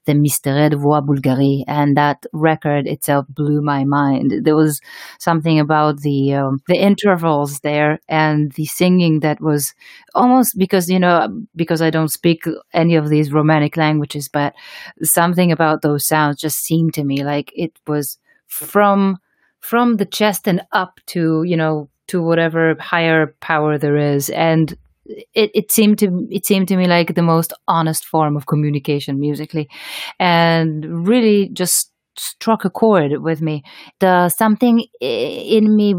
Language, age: English, 30-49